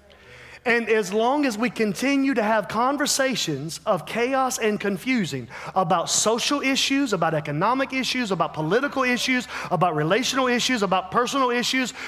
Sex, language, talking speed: male, English, 140 wpm